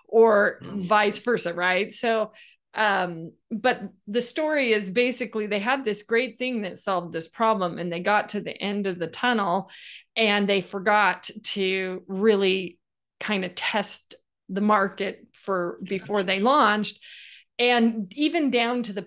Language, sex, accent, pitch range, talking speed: English, female, American, 190-235 Hz, 150 wpm